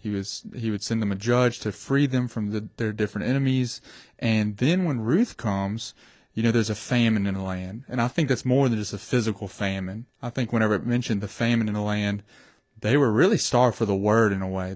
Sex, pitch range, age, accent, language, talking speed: male, 105-135 Hz, 30-49, American, English, 240 wpm